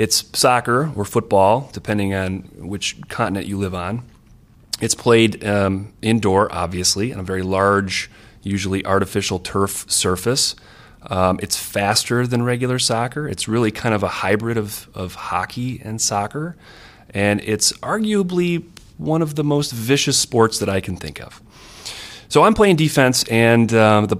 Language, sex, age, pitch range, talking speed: English, male, 30-49, 95-125 Hz, 155 wpm